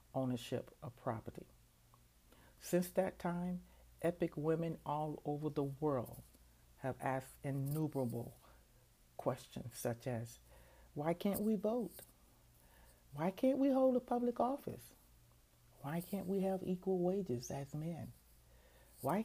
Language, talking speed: English, 120 wpm